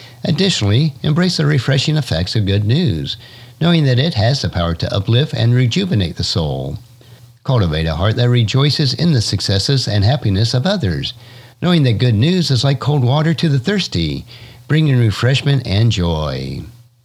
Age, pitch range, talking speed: 50-69, 95-135 Hz, 165 wpm